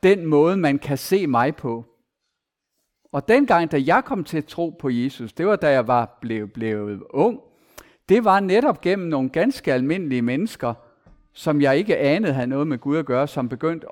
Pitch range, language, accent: 145-210 Hz, Danish, native